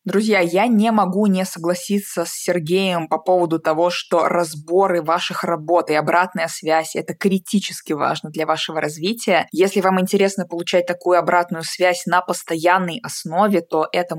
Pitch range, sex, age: 160-180 Hz, female, 20-39